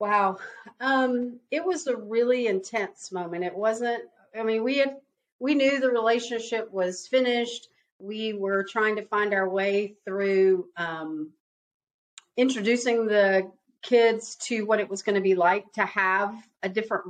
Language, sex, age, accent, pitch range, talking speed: English, female, 40-59, American, 180-220 Hz, 155 wpm